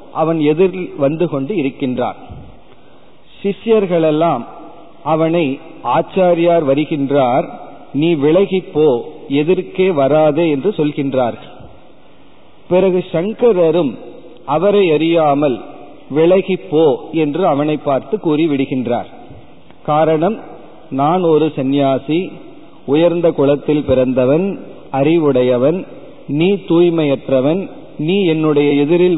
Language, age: Tamil, 40-59